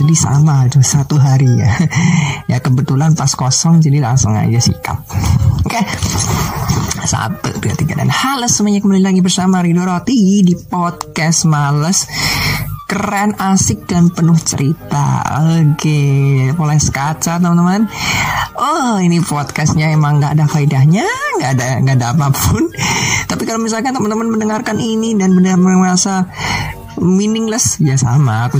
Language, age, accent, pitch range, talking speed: Indonesian, 20-39, native, 135-185 Hz, 135 wpm